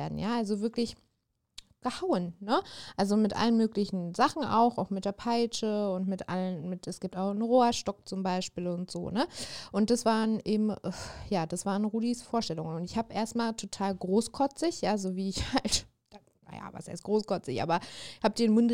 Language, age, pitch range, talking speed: German, 20-39, 175-215 Hz, 185 wpm